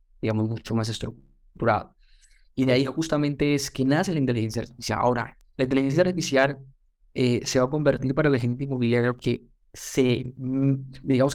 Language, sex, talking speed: Spanish, male, 165 wpm